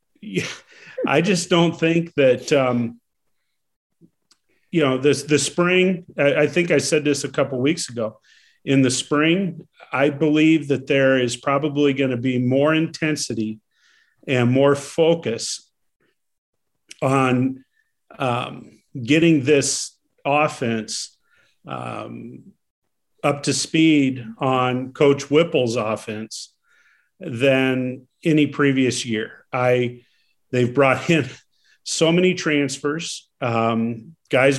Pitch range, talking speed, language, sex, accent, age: 130-155 Hz, 115 wpm, English, male, American, 50-69